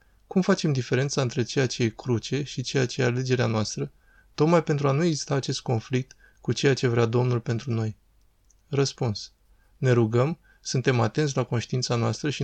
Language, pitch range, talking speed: Romanian, 115-135 Hz, 180 wpm